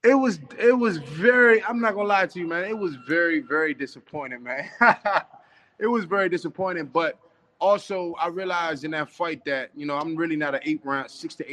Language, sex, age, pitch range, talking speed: English, male, 20-39, 125-155 Hz, 210 wpm